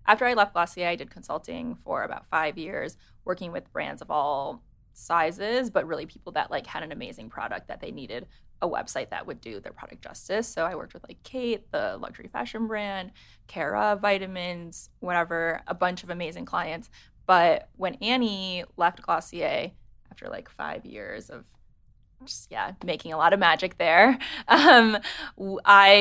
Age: 20-39